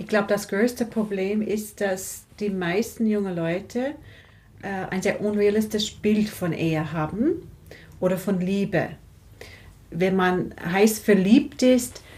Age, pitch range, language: 40-59, 170-215 Hz, German